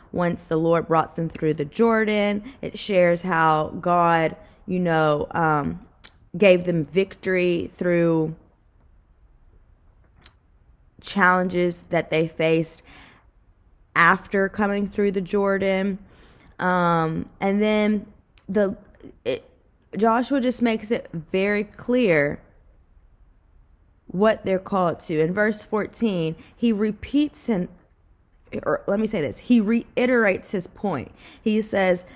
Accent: American